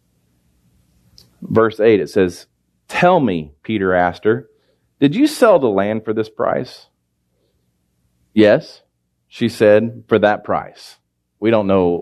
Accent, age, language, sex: American, 40-59, English, male